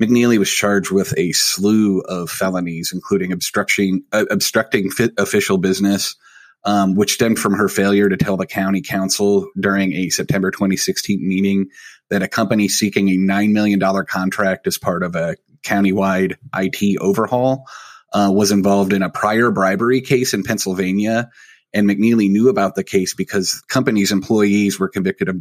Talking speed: 160 wpm